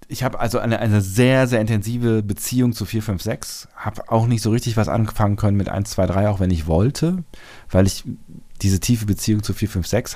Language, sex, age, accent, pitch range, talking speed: German, male, 40-59, German, 80-110 Hz, 205 wpm